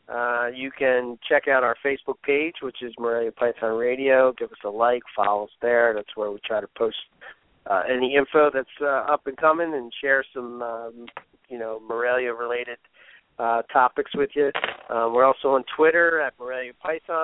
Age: 40-59